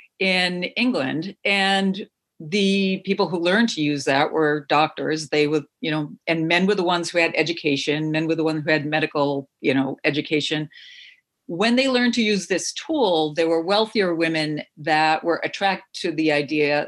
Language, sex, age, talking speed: English, female, 50-69, 180 wpm